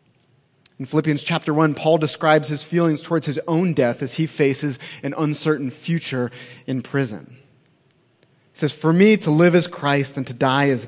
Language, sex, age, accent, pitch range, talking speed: English, male, 30-49, American, 130-155 Hz, 175 wpm